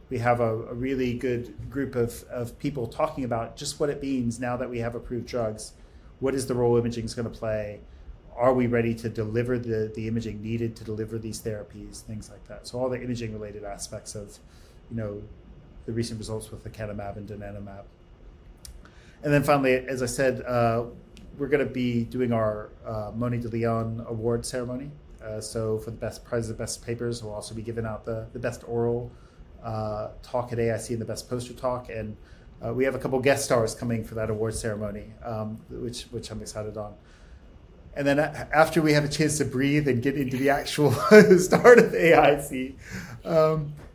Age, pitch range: 30-49, 110-125 Hz